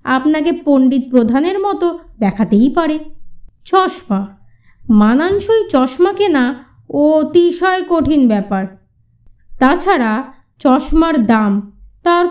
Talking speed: 85 wpm